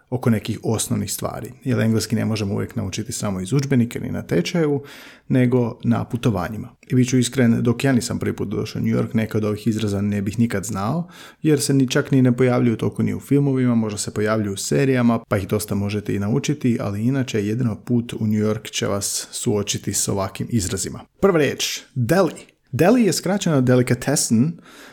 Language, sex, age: Croatian, male, 30-49